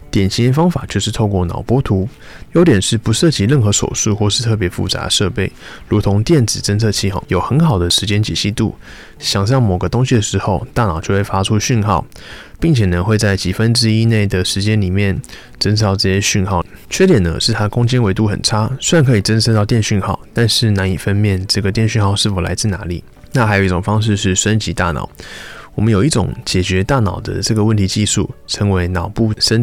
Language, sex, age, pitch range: Chinese, male, 20-39, 95-115 Hz